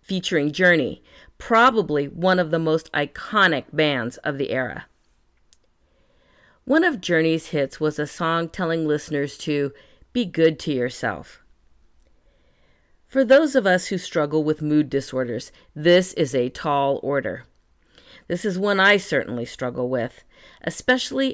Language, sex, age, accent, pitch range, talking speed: English, female, 40-59, American, 140-180 Hz, 135 wpm